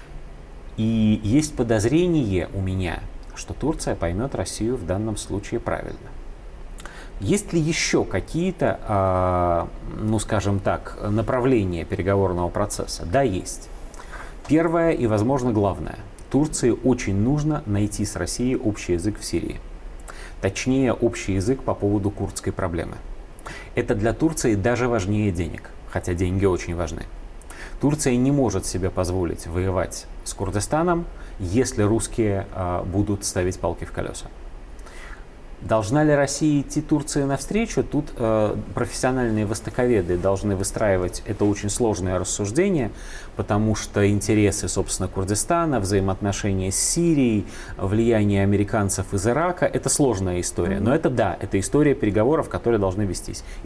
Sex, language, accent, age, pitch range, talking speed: male, Russian, native, 30-49, 95-125 Hz, 125 wpm